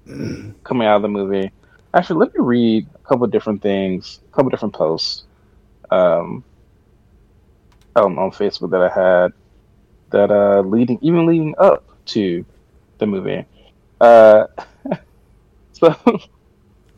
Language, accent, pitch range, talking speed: English, American, 95-140 Hz, 125 wpm